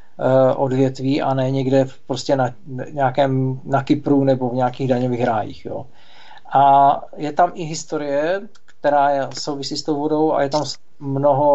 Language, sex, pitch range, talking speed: Czech, male, 135-150 Hz, 155 wpm